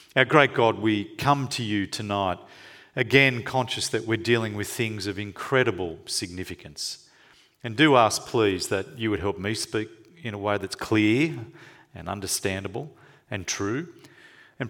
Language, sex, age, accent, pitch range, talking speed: English, male, 40-59, Australian, 95-120 Hz, 155 wpm